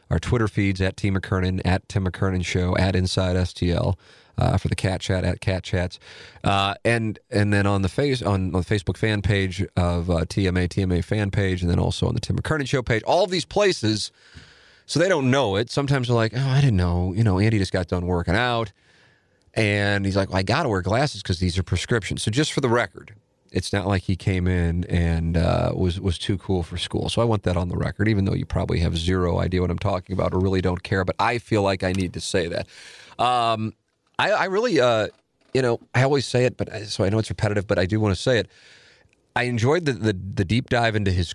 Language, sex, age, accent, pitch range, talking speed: English, male, 40-59, American, 95-115 Hz, 245 wpm